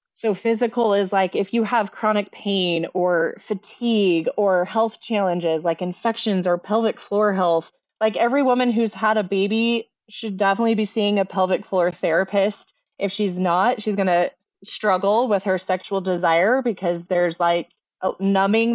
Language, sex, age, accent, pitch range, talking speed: English, female, 20-39, American, 180-220 Hz, 165 wpm